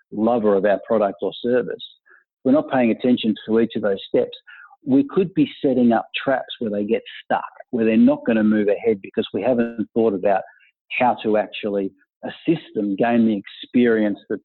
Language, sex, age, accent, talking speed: English, male, 50-69, Australian, 185 wpm